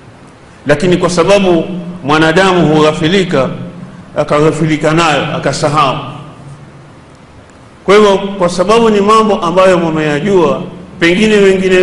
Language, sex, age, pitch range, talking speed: Swahili, male, 50-69, 165-190 Hz, 90 wpm